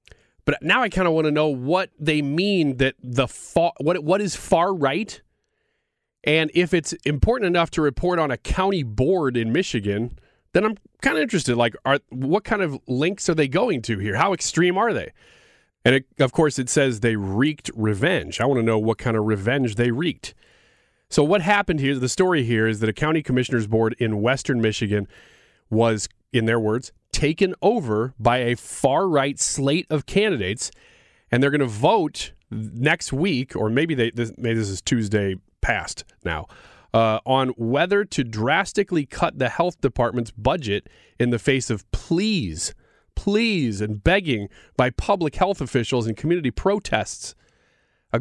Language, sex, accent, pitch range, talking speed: English, male, American, 115-175 Hz, 175 wpm